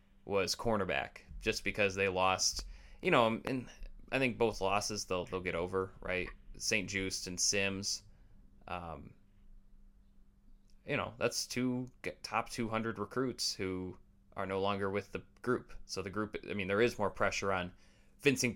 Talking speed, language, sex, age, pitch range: 160 wpm, English, male, 20-39, 95-110 Hz